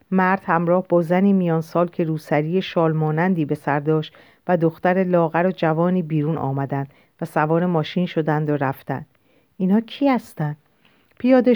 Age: 50-69